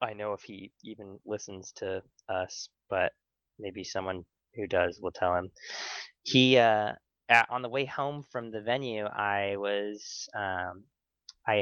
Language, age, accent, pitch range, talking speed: English, 20-39, American, 100-130 Hz, 155 wpm